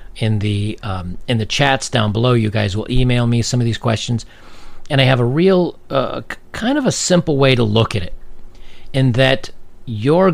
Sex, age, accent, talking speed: male, 40-59, American, 205 wpm